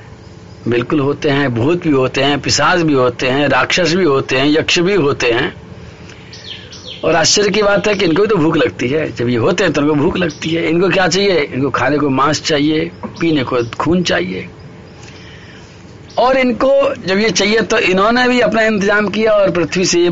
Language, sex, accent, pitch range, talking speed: Hindi, male, native, 125-185 Hz, 200 wpm